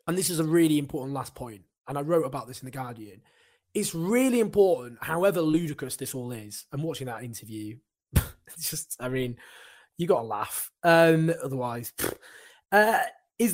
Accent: British